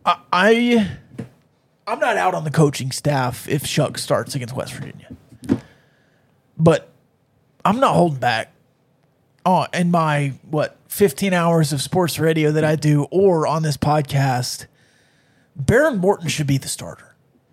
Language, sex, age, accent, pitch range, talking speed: English, male, 30-49, American, 140-200 Hz, 140 wpm